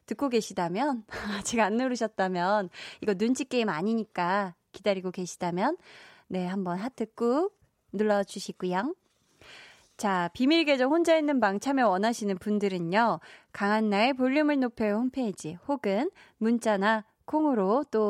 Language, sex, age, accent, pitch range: Korean, female, 20-39, native, 190-255 Hz